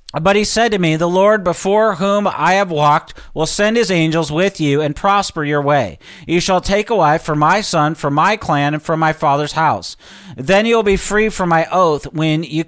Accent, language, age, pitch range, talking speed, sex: American, English, 40-59, 155-200 Hz, 225 wpm, male